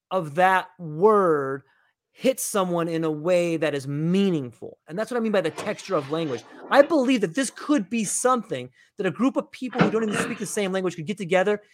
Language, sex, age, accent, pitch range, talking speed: English, male, 30-49, American, 170-225 Hz, 220 wpm